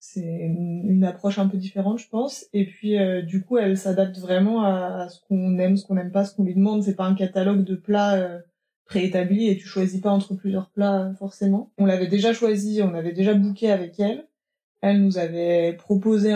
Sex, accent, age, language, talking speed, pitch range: female, French, 20-39, French, 215 wpm, 185-205 Hz